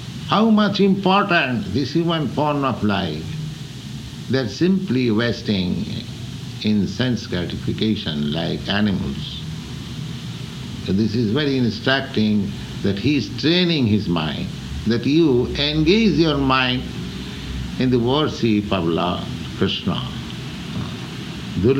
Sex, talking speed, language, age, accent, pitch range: male, 105 wpm, English, 60-79, Indian, 100-150 Hz